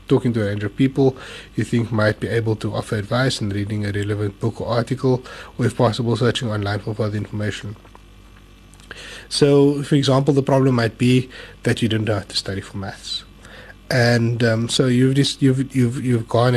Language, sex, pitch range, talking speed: English, male, 105-130 Hz, 195 wpm